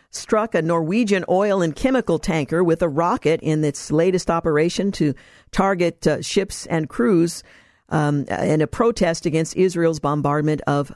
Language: English